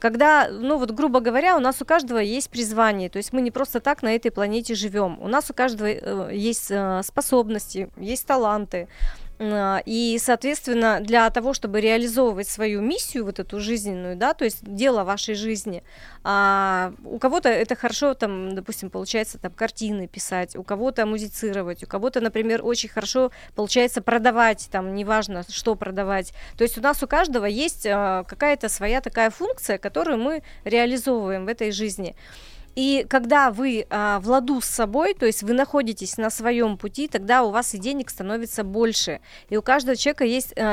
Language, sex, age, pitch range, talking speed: Russian, female, 20-39, 205-255 Hz, 165 wpm